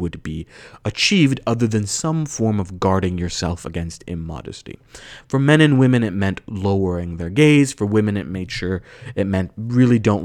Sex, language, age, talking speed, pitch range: male, English, 30-49, 175 wpm, 95-130 Hz